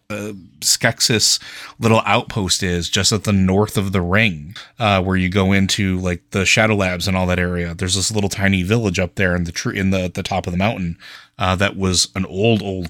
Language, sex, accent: English, male, American